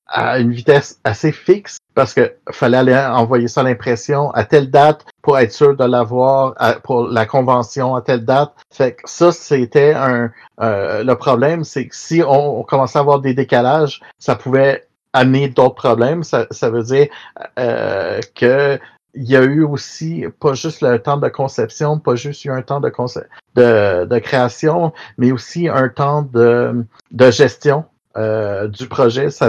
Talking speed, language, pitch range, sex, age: 175 wpm, French, 120-145 Hz, male, 50-69